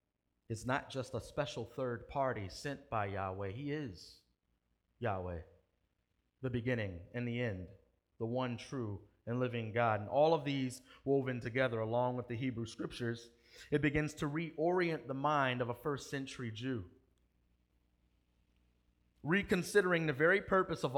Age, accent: 30-49, American